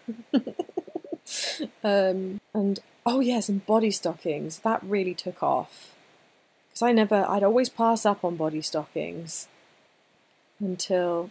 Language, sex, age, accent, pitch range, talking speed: English, female, 20-39, British, 185-235 Hz, 115 wpm